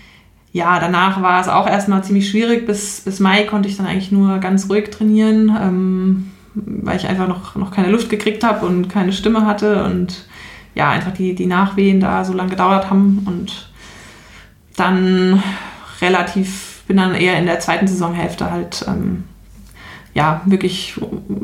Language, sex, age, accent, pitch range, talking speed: German, female, 20-39, German, 185-200 Hz, 160 wpm